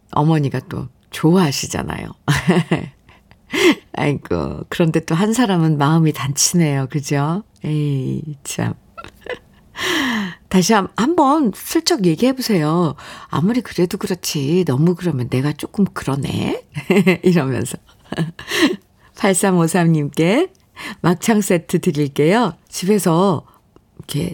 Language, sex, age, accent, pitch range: Korean, female, 50-69, native, 150-215 Hz